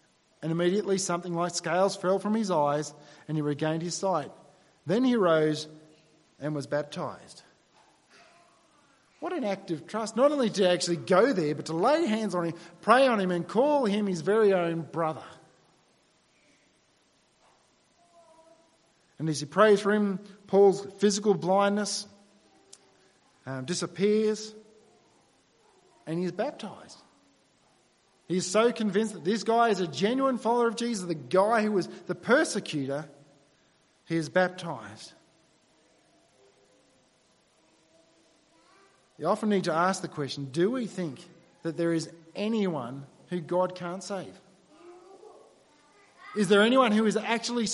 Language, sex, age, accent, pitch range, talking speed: English, male, 40-59, Australian, 165-215 Hz, 135 wpm